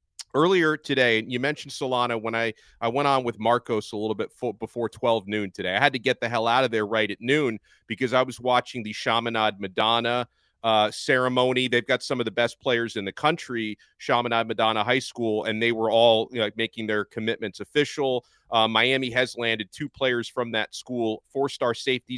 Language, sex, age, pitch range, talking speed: English, male, 40-59, 110-130 Hz, 205 wpm